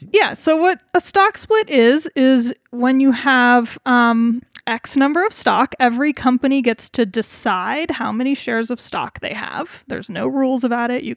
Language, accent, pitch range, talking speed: English, American, 235-280 Hz, 185 wpm